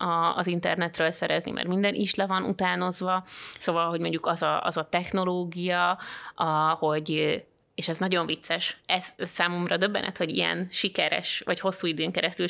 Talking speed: 160 wpm